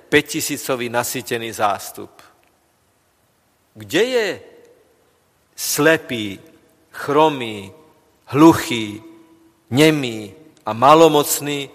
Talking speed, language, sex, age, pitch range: 55 wpm, Slovak, male, 40-59, 115-155 Hz